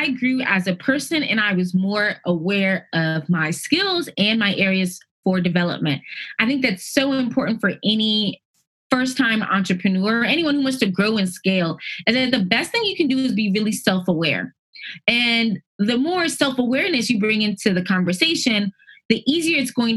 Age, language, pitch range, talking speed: 20-39, English, 185-225 Hz, 175 wpm